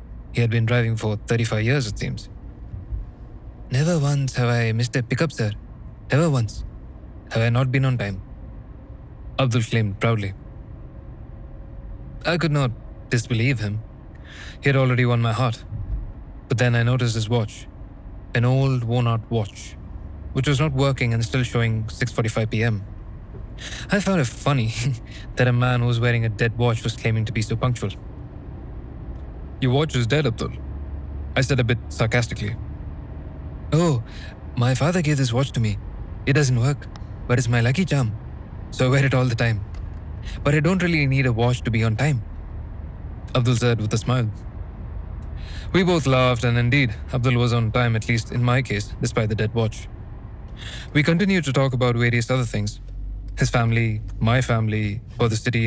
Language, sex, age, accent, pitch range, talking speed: Hindi, male, 20-39, native, 105-125 Hz, 175 wpm